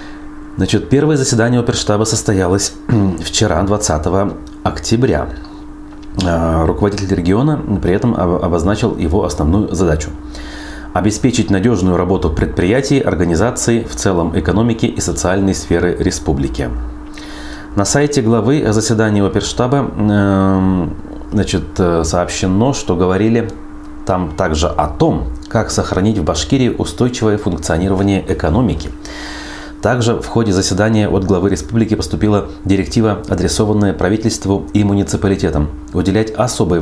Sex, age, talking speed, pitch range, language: male, 30-49, 105 wpm, 80-110 Hz, Russian